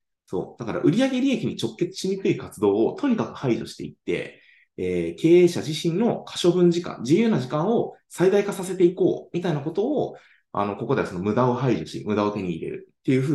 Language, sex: Japanese, male